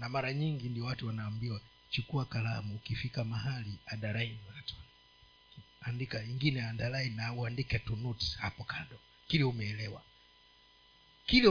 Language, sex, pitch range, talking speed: Swahili, male, 120-150 Hz, 115 wpm